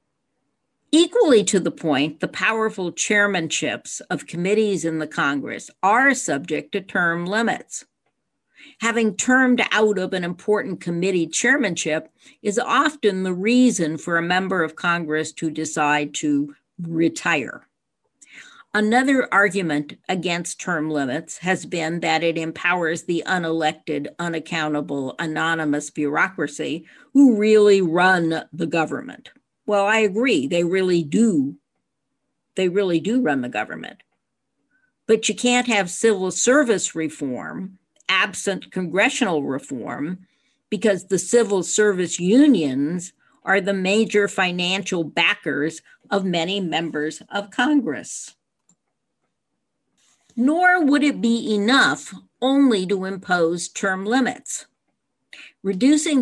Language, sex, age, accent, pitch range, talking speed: English, female, 50-69, American, 165-225 Hz, 115 wpm